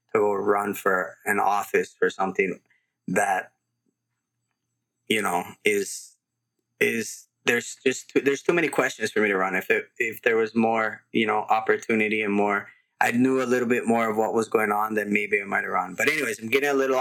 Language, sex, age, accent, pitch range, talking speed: English, male, 20-39, American, 110-135 Hz, 200 wpm